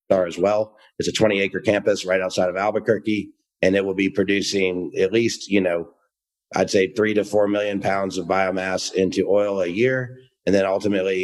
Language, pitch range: English, 95-110 Hz